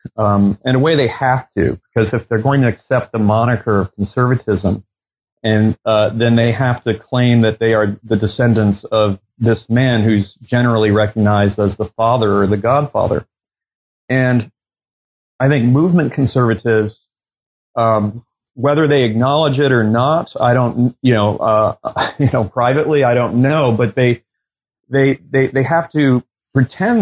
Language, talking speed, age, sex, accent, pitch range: English, 160 wpm, 40-59, male, American, 110-125 Hz